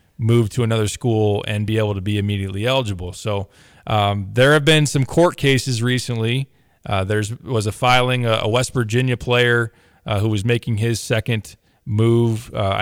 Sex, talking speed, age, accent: male, 175 wpm, 20-39, American